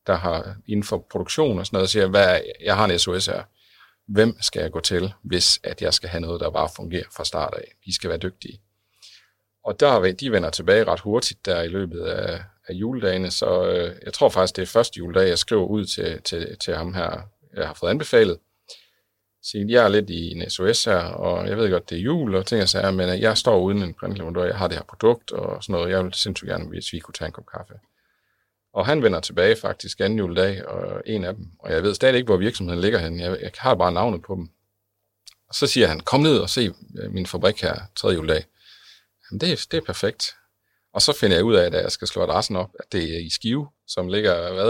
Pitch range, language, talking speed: 90-120 Hz, Danish, 240 wpm